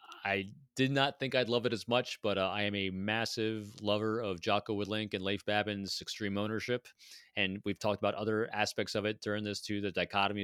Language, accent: English, American